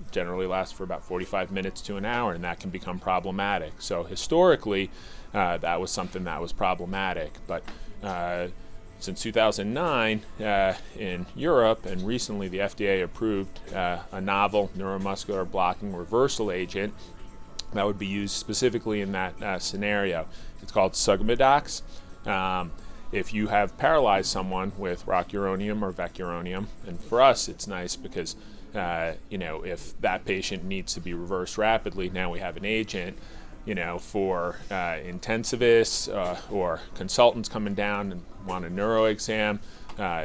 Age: 30-49